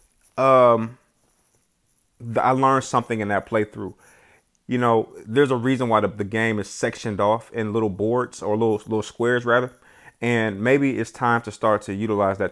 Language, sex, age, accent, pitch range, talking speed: English, male, 30-49, American, 105-130 Hz, 175 wpm